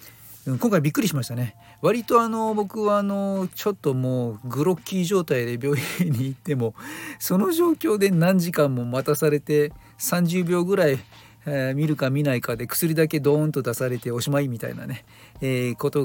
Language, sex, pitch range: Japanese, male, 120-155 Hz